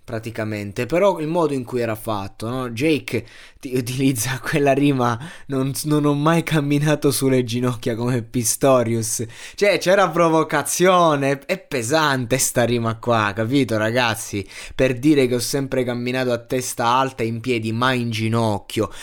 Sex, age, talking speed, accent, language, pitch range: male, 20-39, 145 wpm, native, Italian, 115-135 Hz